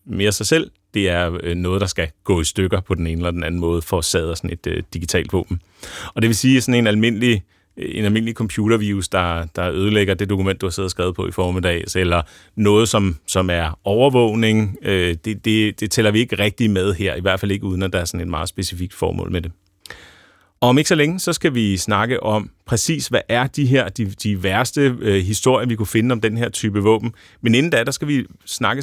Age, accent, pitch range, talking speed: 30-49, native, 95-115 Hz, 240 wpm